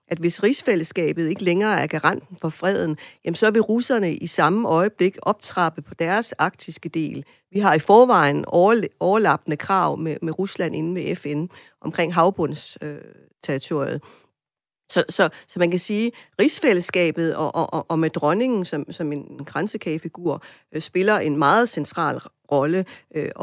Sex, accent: female, native